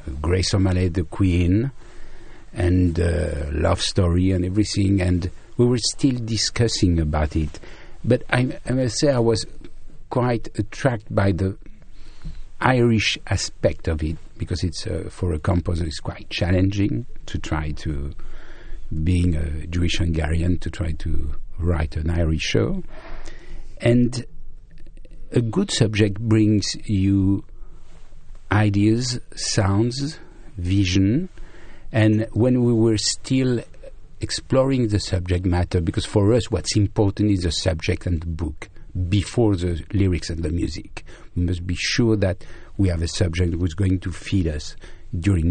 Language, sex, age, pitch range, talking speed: English, male, 50-69, 85-110 Hz, 135 wpm